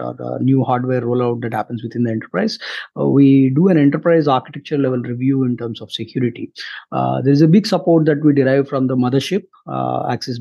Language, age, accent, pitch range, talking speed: English, 20-39, Indian, 125-150 Hz, 195 wpm